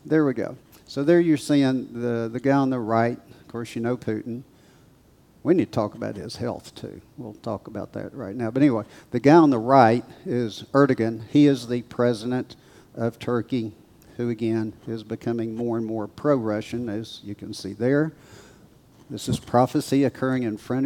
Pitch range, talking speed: 115-135 Hz, 190 wpm